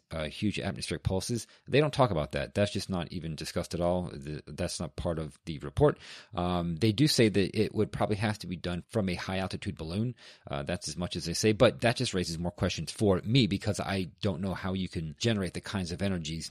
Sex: male